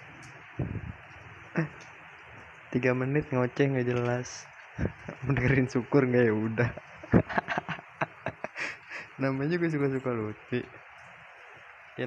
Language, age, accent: Indonesian, 20-39, native